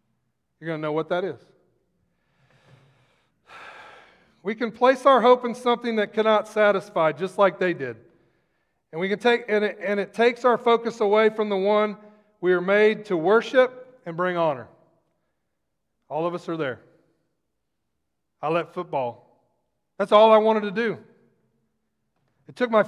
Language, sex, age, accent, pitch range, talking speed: English, male, 40-59, American, 135-225 Hz, 155 wpm